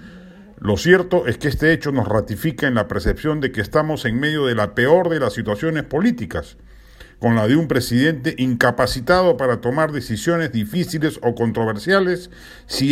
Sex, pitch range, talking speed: male, 115-160 Hz, 165 wpm